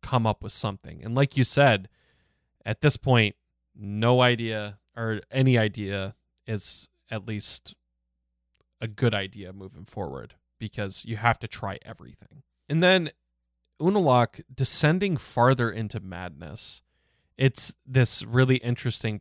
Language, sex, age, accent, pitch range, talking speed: English, male, 20-39, American, 100-135 Hz, 130 wpm